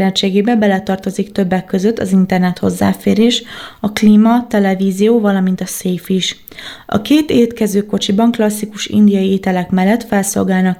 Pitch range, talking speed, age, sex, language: 185-210 Hz, 115 wpm, 20-39, female, Hungarian